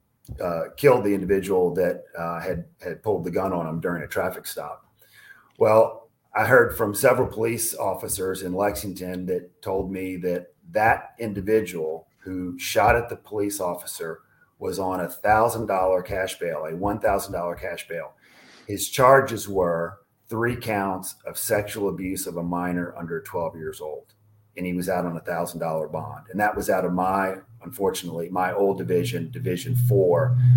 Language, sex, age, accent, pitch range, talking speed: English, male, 40-59, American, 90-110 Hz, 170 wpm